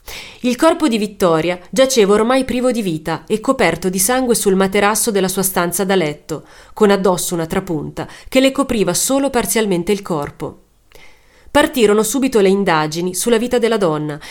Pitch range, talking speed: 180-245 Hz, 165 wpm